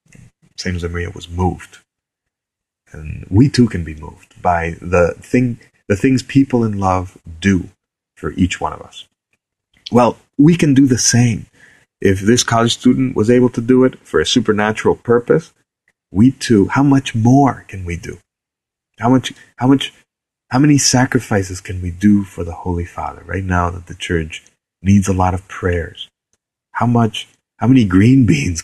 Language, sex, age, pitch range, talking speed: English, male, 30-49, 90-120 Hz, 170 wpm